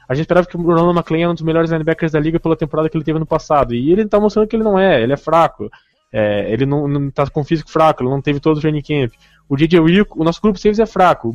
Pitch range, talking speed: 140-170 Hz, 300 wpm